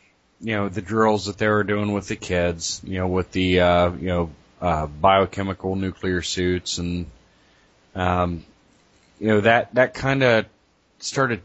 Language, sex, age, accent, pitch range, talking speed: English, male, 30-49, American, 95-110 Hz, 160 wpm